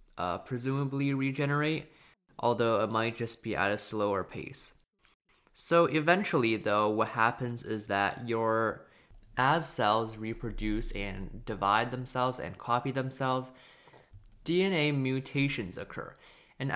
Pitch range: 105-130 Hz